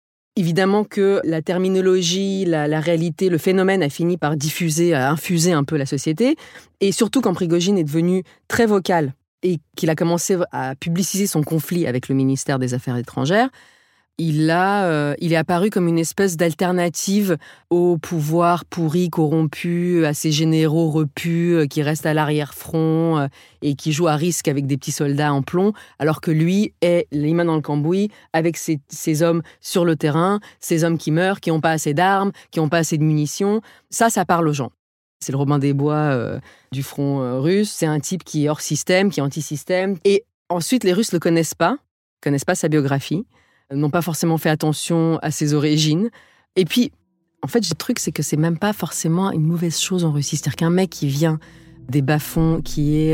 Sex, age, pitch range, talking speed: female, 30-49, 150-180 Hz, 200 wpm